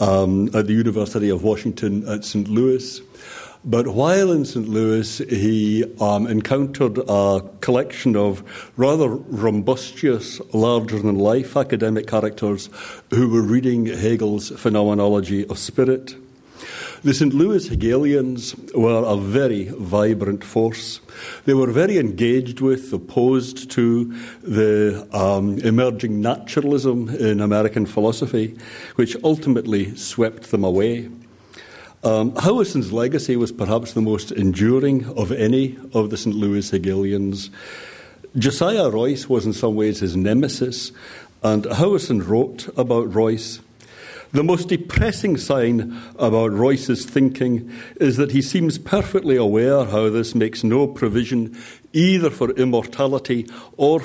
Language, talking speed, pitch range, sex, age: English, 120 wpm, 110-130 Hz, male, 60-79